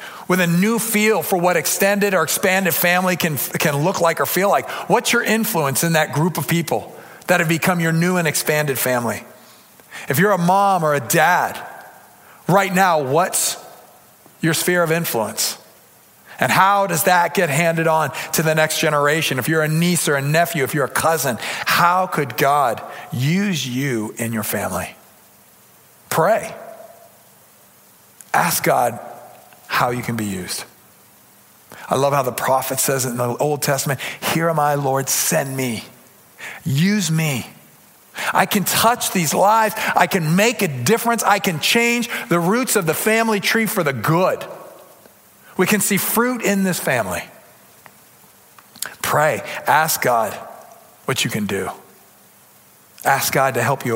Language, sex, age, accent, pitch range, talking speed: English, male, 40-59, American, 140-190 Hz, 160 wpm